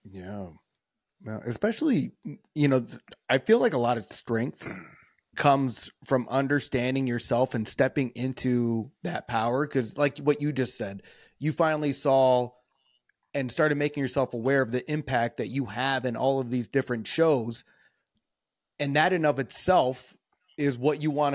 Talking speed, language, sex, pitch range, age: 155 wpm, English, male, 125-150 Hz, 30-49